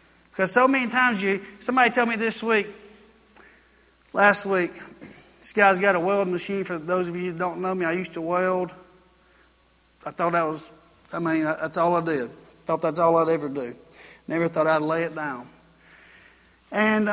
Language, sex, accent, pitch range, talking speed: English, male, American, 165-205 Hz, 185 wpm